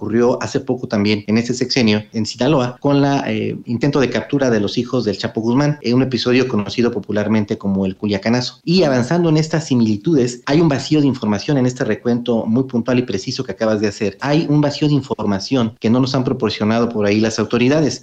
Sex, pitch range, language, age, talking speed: male, 110-130 Hz, Spanish, 40-59, 215 wpm